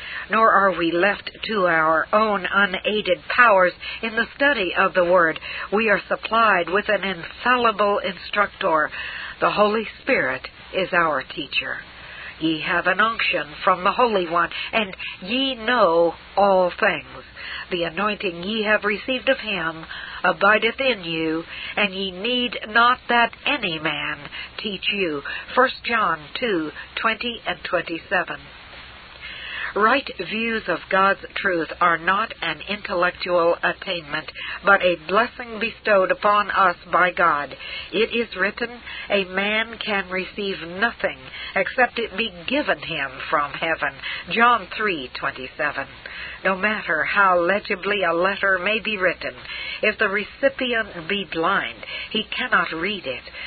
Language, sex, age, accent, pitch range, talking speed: English, female, 60-79, American, 180-225 Hz, 130 wpm